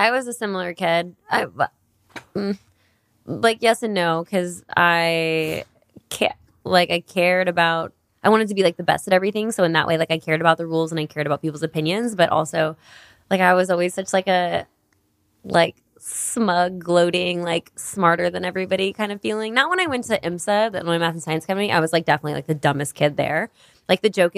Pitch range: 155-185 Hz